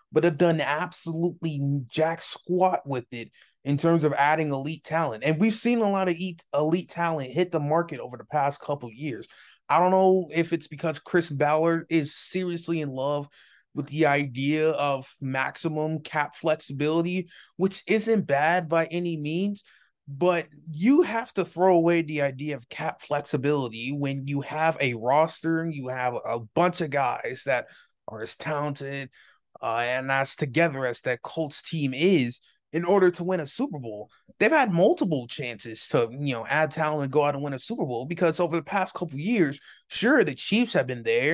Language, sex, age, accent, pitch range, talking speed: English, male, 20-39, American, 140-180 Hz, 185 wpm